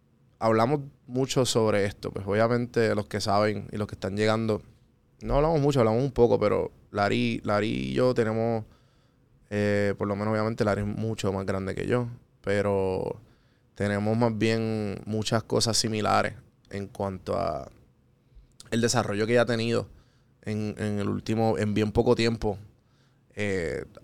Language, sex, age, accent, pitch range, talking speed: Spanish, male, 20-39, Venezuelan, 105-120 Hz, 155 wpm